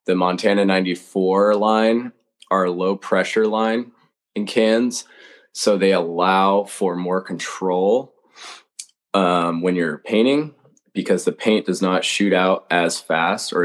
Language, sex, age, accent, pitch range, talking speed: English, male, 20-39, American, 90-100 Hz, 130 wpm